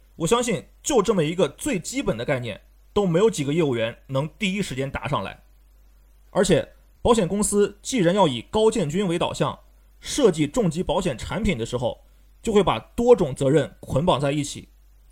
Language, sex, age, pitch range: Chinese, male, 30-49, 135-220 Hz